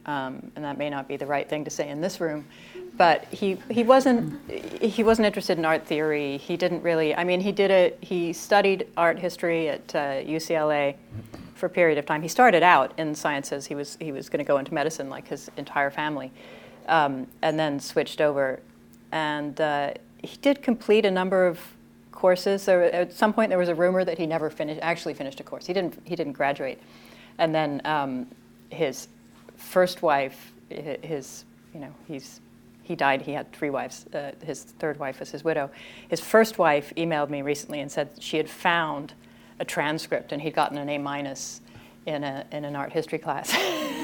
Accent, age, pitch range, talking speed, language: American, 30-49, 145-190 Hz, 200 wpm, English